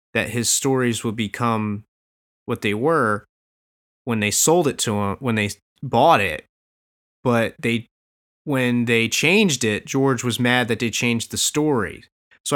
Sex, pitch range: male, 115-140 Hz